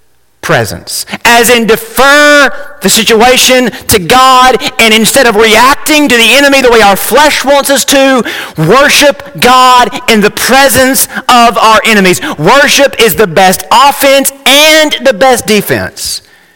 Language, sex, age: English, male, 40-59